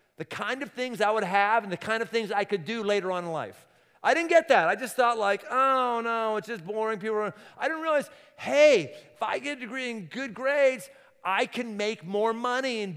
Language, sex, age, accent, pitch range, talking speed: English, male, 50-69, American, 165-240 Hz, 240 wpm